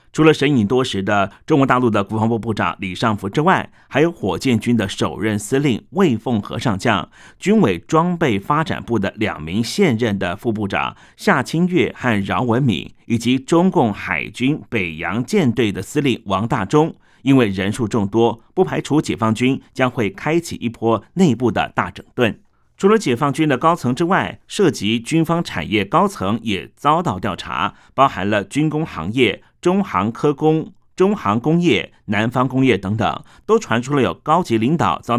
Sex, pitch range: male, 105-155 Hz